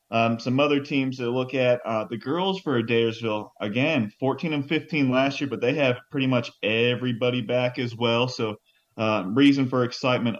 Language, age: English, 30-49